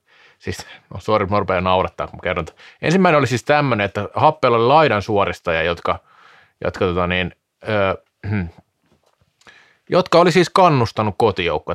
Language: Finnish